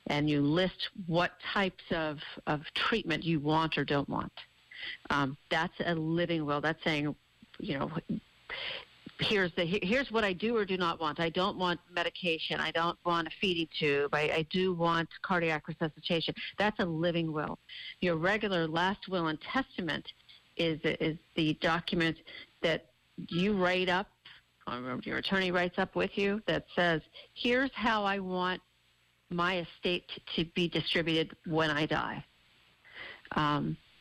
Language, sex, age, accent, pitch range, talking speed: English, female, 50-69, American, 155-190 Hz, 155 wpm